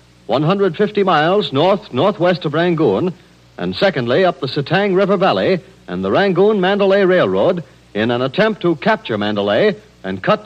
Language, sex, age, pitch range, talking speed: English, male, 60-79, 120-195 Hz, 150 wpm